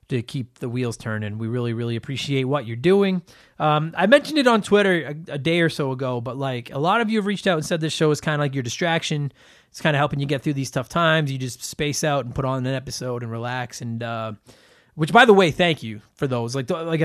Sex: male